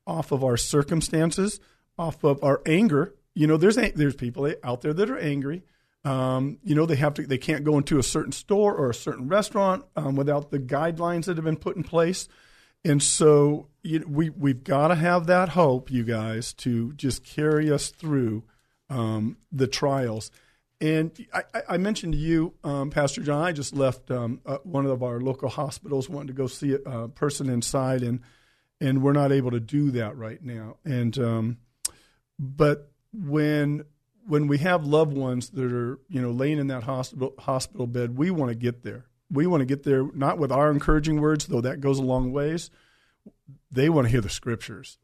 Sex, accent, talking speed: male, American, 195 wpm